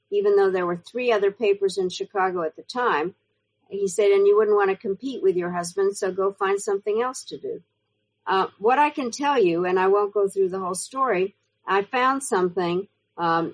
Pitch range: 180-230 Hz